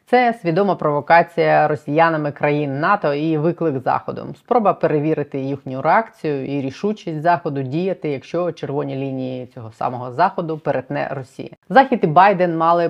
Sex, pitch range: female, 140-170 Hz